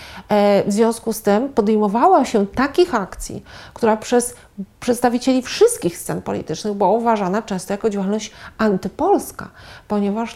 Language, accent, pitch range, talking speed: Polish, native, 200-240 Hz, 120 wpm